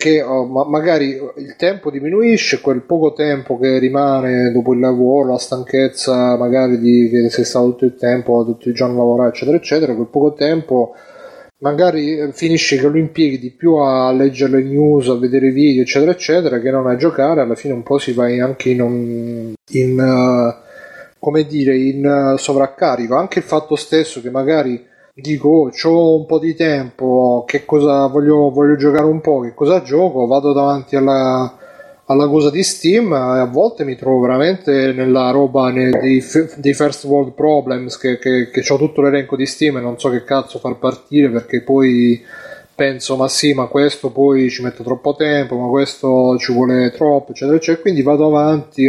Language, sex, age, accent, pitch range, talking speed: Italian, male, 30-49, native, 130-150 Hz, 185 wpm